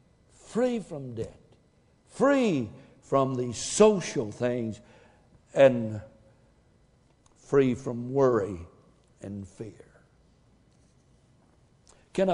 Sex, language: male, English